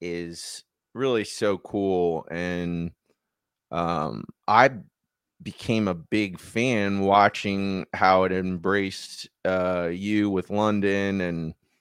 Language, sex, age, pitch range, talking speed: English, male, 30-49, 95-120 Hz, 100 wpm